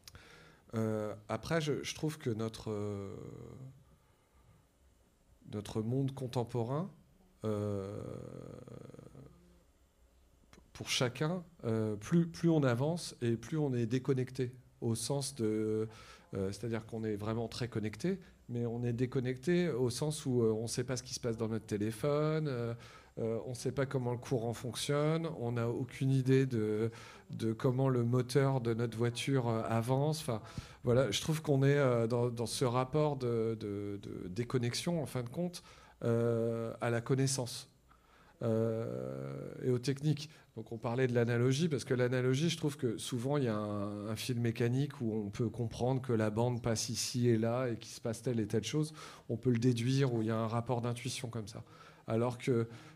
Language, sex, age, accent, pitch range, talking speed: French, male, 40-59, French, 115-135 Hz, 175 wpm